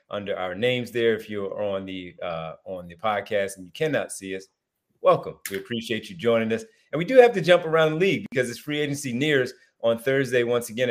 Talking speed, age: 225 wpm, 30-49